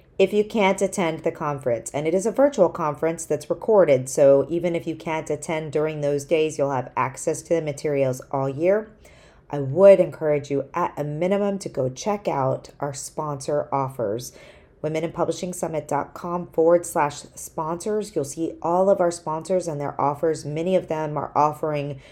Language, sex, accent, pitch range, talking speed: English, female, American, 145-170 Hz, 170 wpm